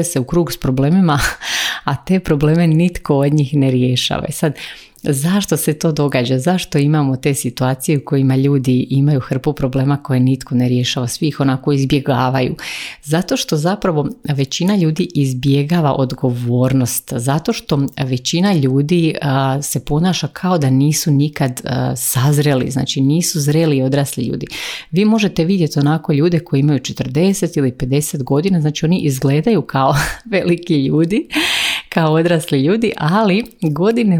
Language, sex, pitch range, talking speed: Croatian, female, 135-170 Hz, 145 wpm